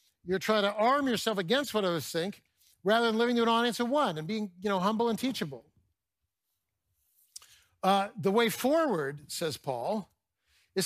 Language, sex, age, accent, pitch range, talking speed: English, male, 60-79, American, 150-230 Hz, 170 wpm